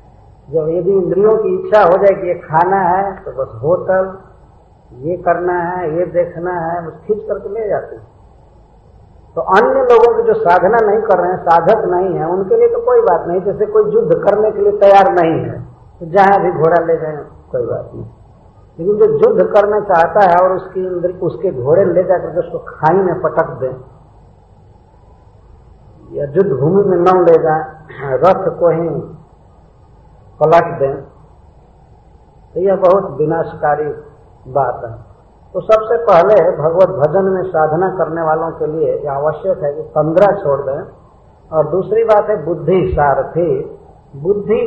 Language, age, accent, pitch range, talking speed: English, 50-69, Indian, 150-200 Hz, 140 wpm